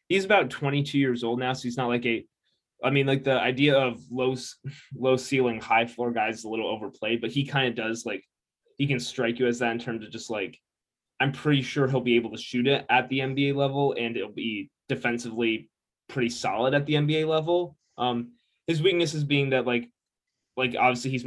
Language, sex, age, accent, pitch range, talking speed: English, male, 20-39, American, 115-140 Hz, 215 wpm